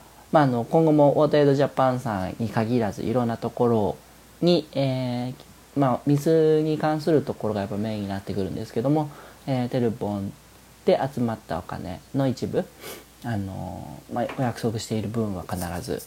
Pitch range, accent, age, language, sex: 110-140 Hz, native, 40-59, Japanese, male